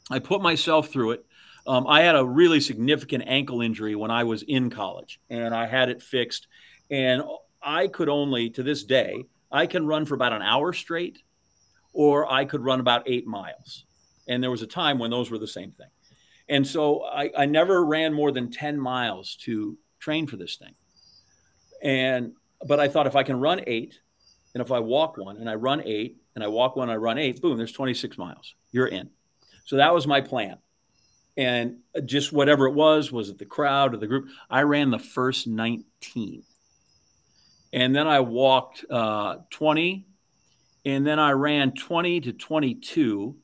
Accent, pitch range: American, 120-150 Hz